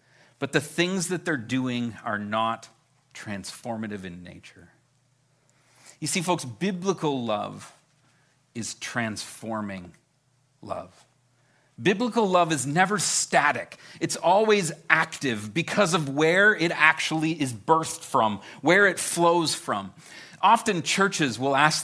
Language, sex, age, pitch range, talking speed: English, male, 40-59, 145-220 Hz, 120 wpm